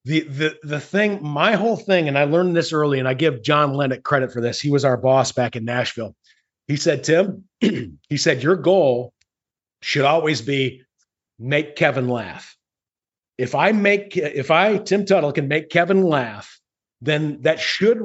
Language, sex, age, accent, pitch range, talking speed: English, male, 40-59, American, 130-175 Hz, 180 wpm